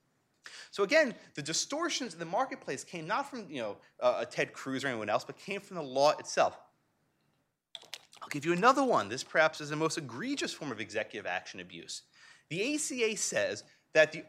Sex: male